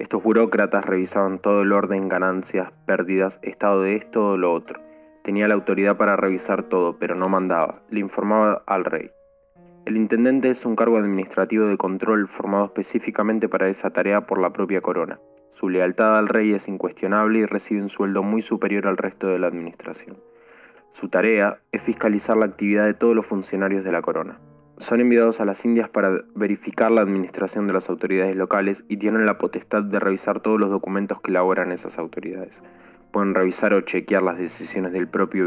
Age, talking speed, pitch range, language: 20-39, 185 wpm, 95-110 Hz, Spanish